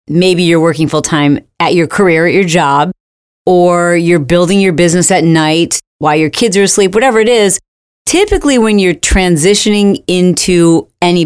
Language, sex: English, female